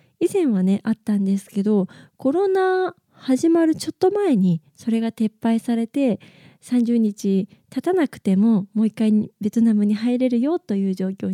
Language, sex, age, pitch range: Japanese, female, 20-39, 200-270 Hz